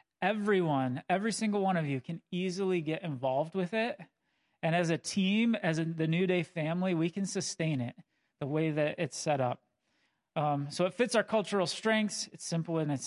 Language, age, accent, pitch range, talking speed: English, 30-49, American, 150-185 Hz, 195 wpm